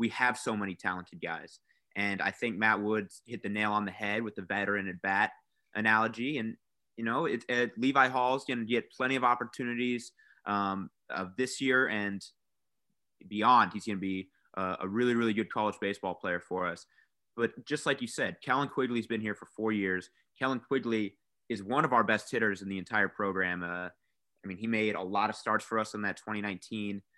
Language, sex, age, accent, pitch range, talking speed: English, male, 30-49, American, 95-115 Hz, 210 wpm